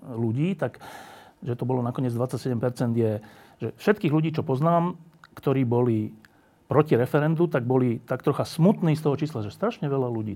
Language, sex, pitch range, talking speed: Slovak, male, 115-145 Hz, 170 wpm